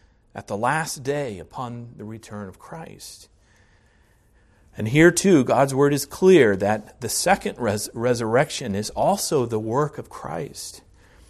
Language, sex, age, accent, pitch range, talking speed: English, male, 40-59, American, 95-150 Hz, 140 wpm